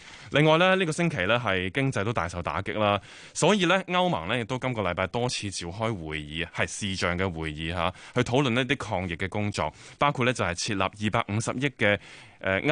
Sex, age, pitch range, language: male, 20-39, 95-125 Hz, Chinese